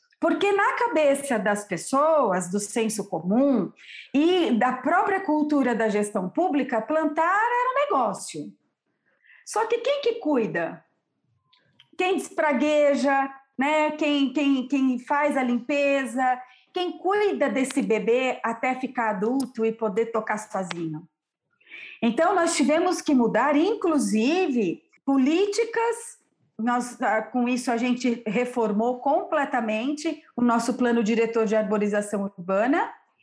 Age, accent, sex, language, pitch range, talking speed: 40-59, Brazilian, female, Portuguese, 230-340 Hz, 115 wpm